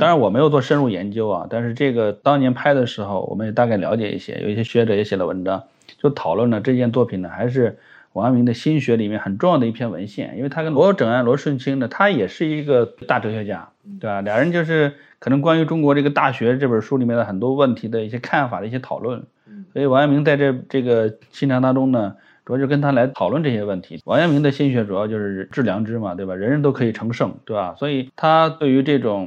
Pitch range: 110-145 Hz